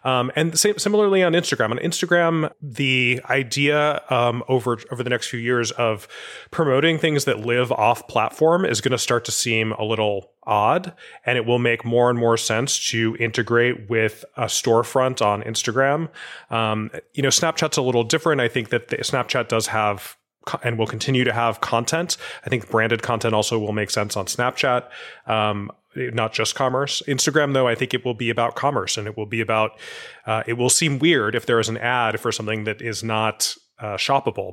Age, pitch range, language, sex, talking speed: 20-39, 110-135 Hz, English, male, 195 wpm